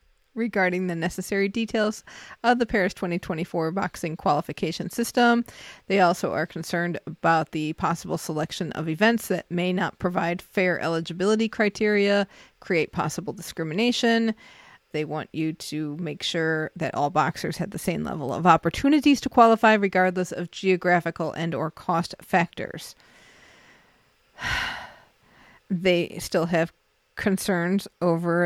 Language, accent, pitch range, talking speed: English, American, 170-220 Hz, 125 wpm